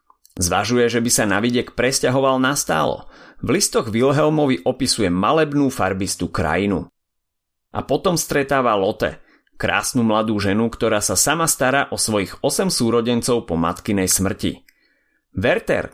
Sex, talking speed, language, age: male, 130 wpm, Slovak, 30-49